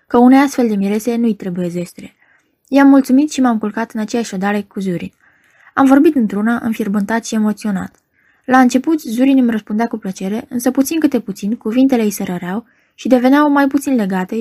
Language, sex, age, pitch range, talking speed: Romanian, female, 20-39, 200-255 Hz, 180 wpm